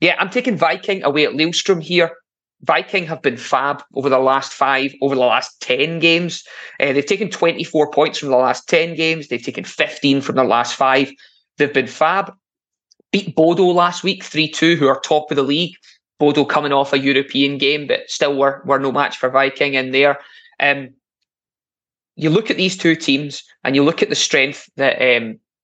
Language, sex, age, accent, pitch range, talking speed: English, male, 20-39, British, 135-165 Hz, 195 wpm